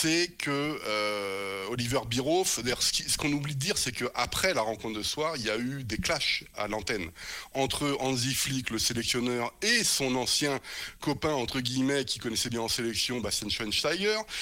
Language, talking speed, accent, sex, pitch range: French, 185 wpm, French, male, 115-150 Hz